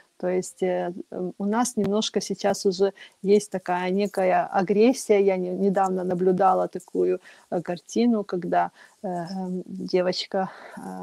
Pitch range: 190-215 Hz